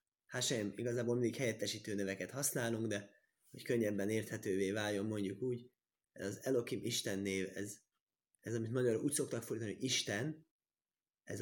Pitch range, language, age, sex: 105-130 Hz, Hungarian, 20-39, male